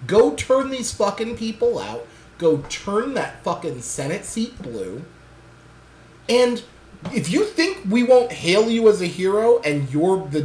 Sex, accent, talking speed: male, American, 155 wpm